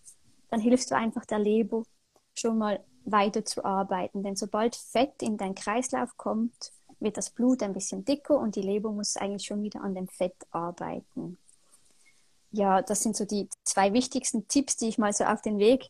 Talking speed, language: 190 wpm, German